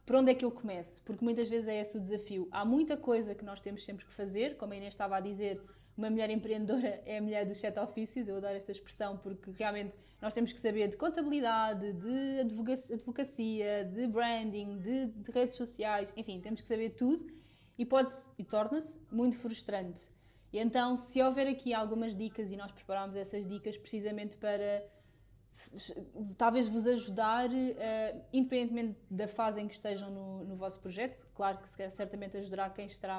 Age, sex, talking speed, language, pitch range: 20-39, female, 185 wpm, Portuguese, 200-240 Hz